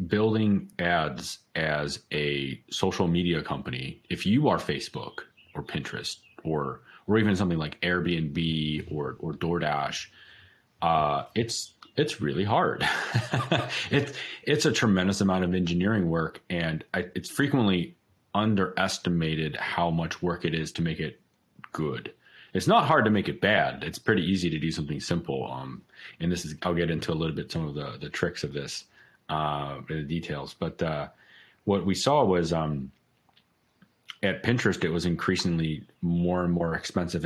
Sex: male